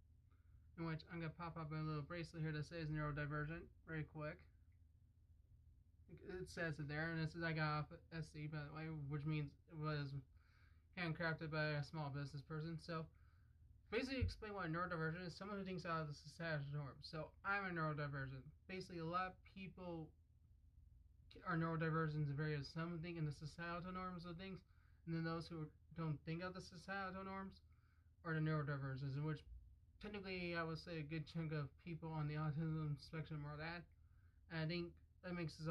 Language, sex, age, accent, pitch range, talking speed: English, male, 20-39, American, 140-165 Hz, 190 wpm